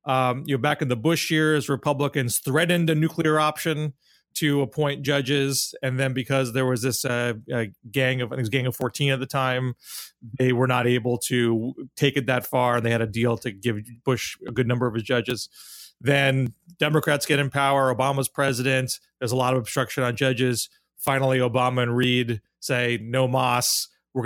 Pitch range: 125-145 Hz